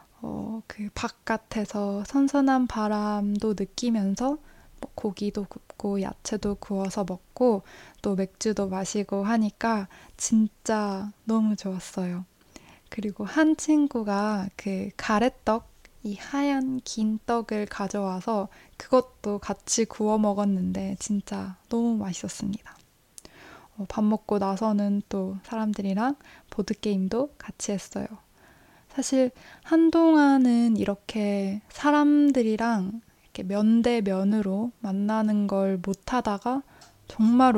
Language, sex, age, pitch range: Korean, female, 20-39, 195-230 Hz